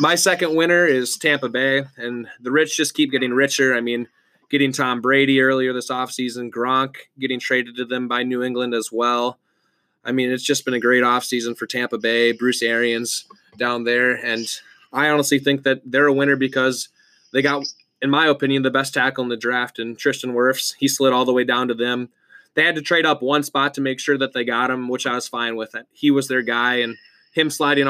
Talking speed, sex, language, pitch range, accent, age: 220 wpm, male, English, 125-150 Hz, American, 20-39